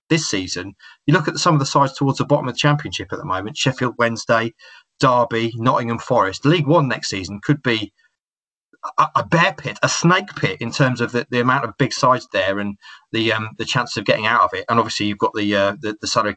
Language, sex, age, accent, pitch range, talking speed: English, male, 30-49, British, 105-130 Hz, 240 wpm